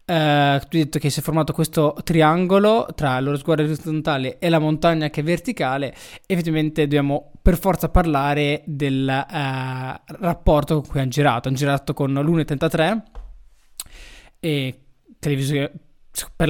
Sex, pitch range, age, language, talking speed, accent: male, 145-175 Hz, 20-39, Italian, 140 wpm, native